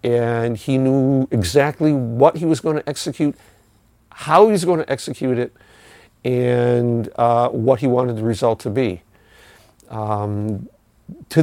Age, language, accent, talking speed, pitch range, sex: 50-69, English, American, 145 wpm, 100-120 Hz, male